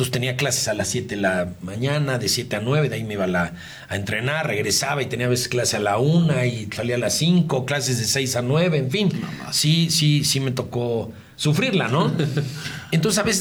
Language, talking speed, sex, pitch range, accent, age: Spanish, 225 wpm, male, 125-155 Hz, Mexican, 50-69